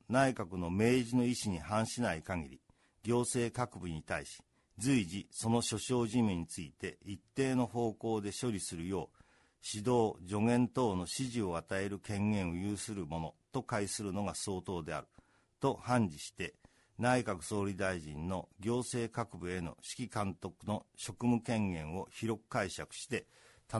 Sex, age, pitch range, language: male, 50-69, 90-120 Hz, Japanese